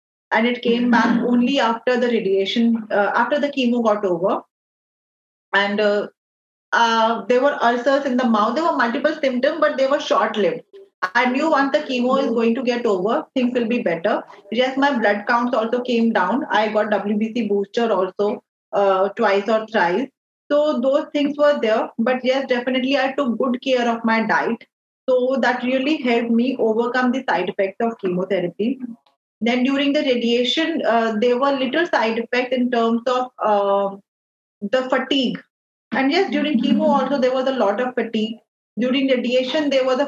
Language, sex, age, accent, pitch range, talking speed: English, female, 30-49, Indian, 215-265 Hz, 180 wpm